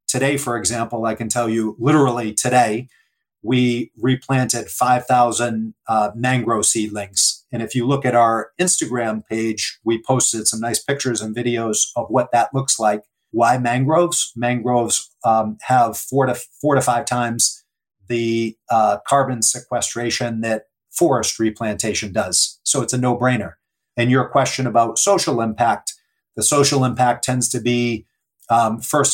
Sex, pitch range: male, 115-125 Hz